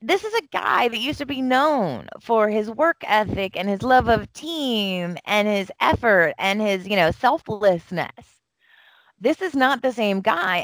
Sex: female